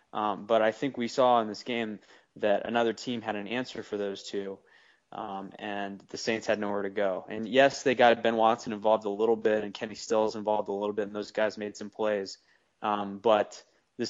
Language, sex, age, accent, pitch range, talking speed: English, male, 20-39, American, 105-125 Hz, 220 wpm